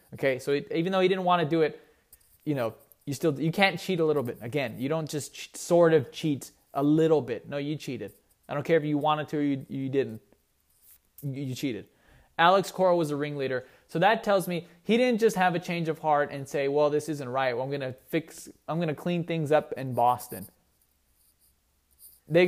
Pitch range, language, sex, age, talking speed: 135-175 Hz, English, male, 20-39, 215 wpm